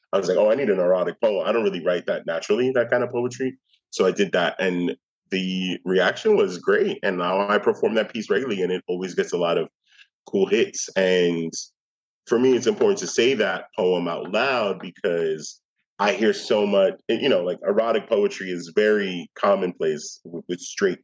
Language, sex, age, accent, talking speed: English, male, 30-49, American, 205 wpm